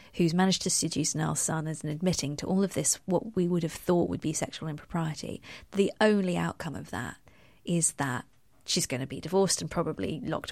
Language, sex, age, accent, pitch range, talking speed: English, female, 20-39, British, 165-210 Hz, 210 wpm